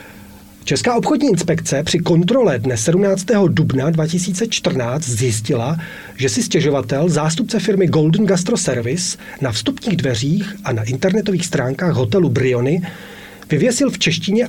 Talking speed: 125 wpm